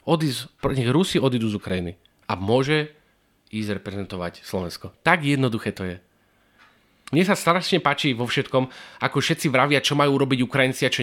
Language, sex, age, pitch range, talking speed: Slovak, male, 30-49, 125-175 Hz, 150 wpm